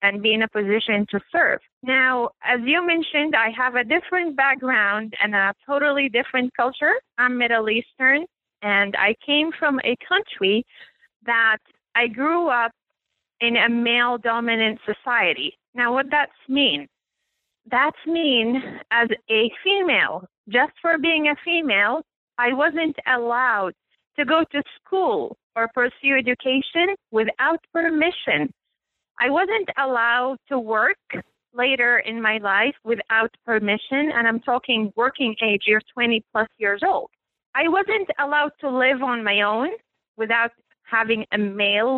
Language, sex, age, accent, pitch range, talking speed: English, female, 30-49, American, 225-295 Hz, 140 wpm